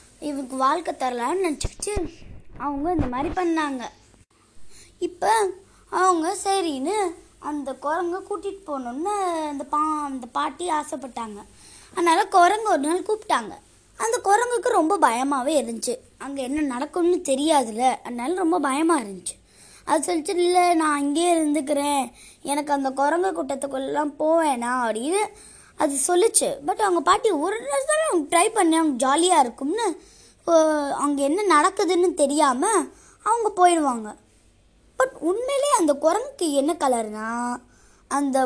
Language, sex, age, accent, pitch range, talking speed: Tamil, female, 20-39, native, 285-380 Hz, 115 wpm